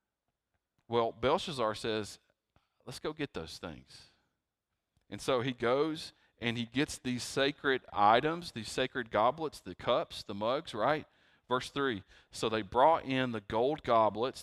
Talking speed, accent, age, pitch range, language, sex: 145 wpm, American, 40-59, 105-130 Hz, English, male